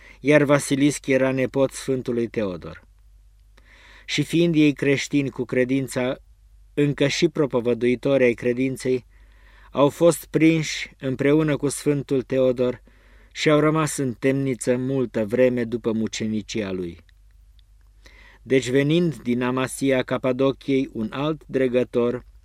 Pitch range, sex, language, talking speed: 120-145 Hz, male, Romanian, 110 wpm